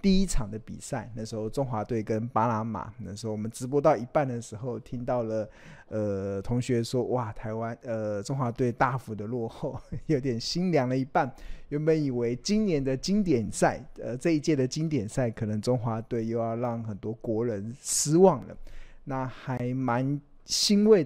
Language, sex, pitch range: Chinese, male, 110-140 Hz